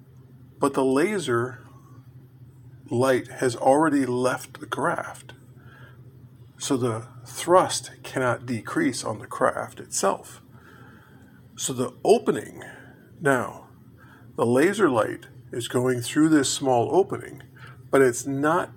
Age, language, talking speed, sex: 50-69, English, 110 wpm, male